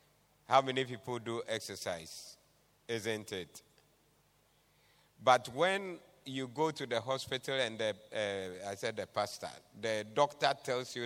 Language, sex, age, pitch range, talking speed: English, male, 50-69, 120-150 Hz, 135 wpm